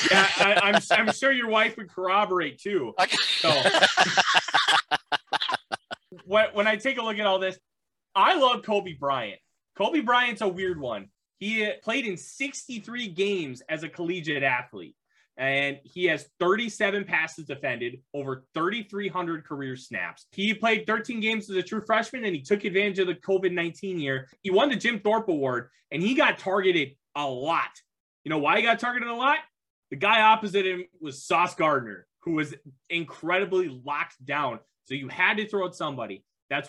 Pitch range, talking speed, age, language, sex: 135-205 Hz, 165 wpm, 20-39, English, male